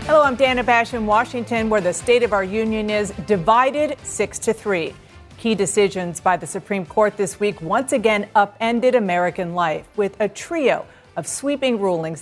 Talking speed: 175 wpm